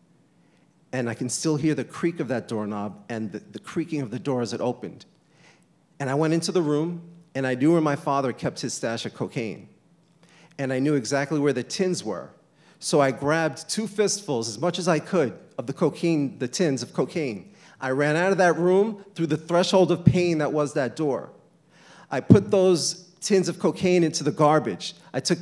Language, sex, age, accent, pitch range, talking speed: English, male, 40-59, American, 140-180 Hz, 210 wpm